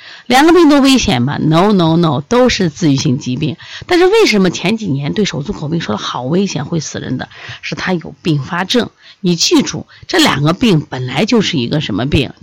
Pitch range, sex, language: 145-190 Hz, female, Chinese